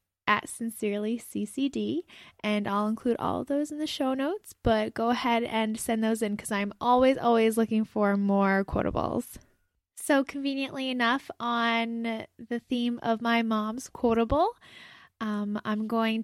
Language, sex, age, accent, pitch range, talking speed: English, female, 10-29, American, 215-260 Hz, 150 wpm